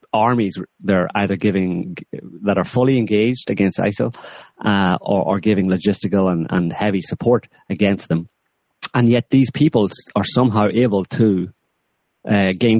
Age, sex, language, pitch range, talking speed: 30-49, male, English, 95-115 Hz, 140 wpm